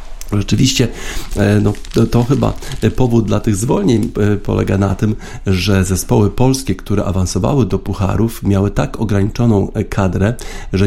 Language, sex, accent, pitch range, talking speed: Polish, male, native, 95-115 Hz, 125 wpm